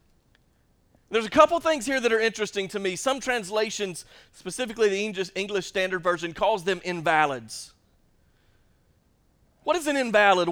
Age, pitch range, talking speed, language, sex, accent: 30-49, 210-255 Hz, 135 wpm, English, male, American